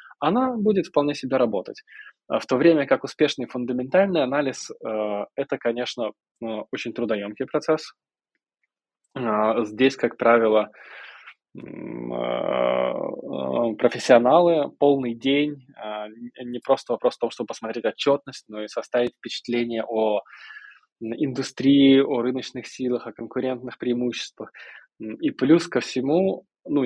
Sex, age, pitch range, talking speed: male, 20-39, 110-145 Hz, 105 wpm